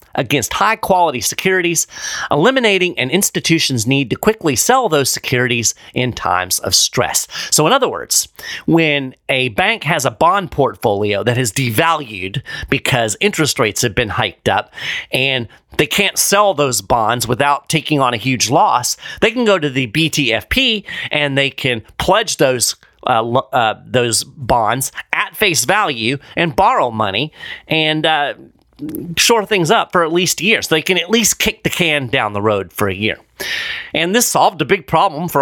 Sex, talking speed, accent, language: male, 165 wpm, American, English